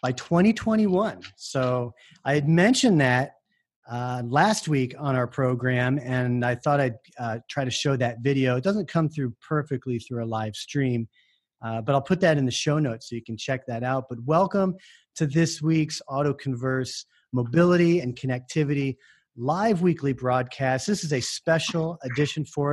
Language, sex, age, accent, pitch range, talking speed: English, male, 30-49, American, 125-150 Hz, 175 wpm